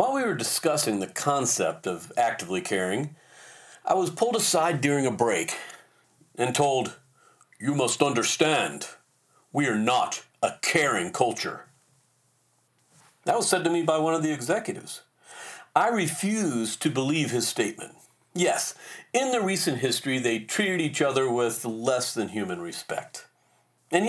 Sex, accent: male, American